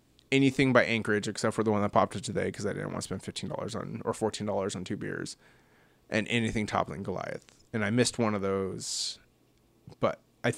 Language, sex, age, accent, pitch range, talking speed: English, male, 20-39, American, 105-125 Hz, 220 wpm